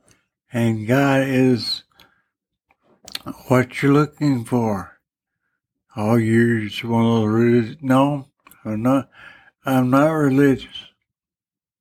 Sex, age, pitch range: male, 60-79, 120-140 Hz